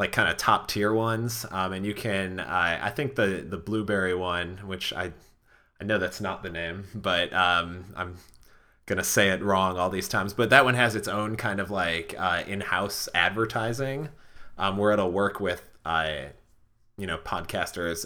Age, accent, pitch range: 20-39, American, 95-110 Hz